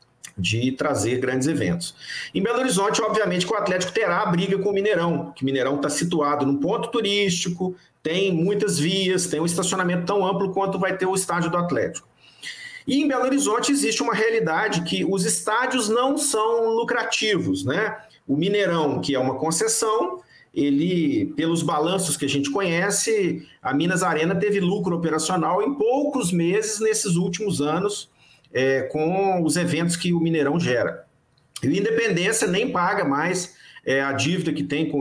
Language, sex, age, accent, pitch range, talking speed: Portuguese, male, 50-69, Brazilian, 150-210 Hz, 170 wpm